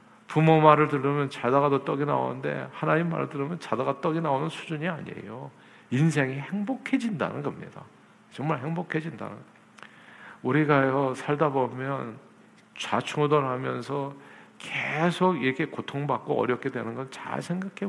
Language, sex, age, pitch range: Korean, male, 50-69, 120-160 Hz